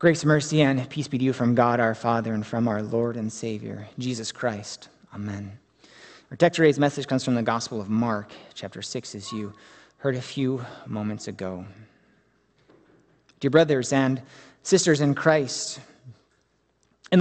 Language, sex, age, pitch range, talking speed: English, male, 30-49, 135-205 Hz, 155 wpm